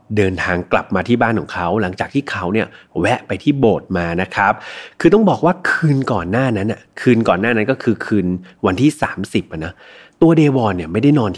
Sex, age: male, 30-49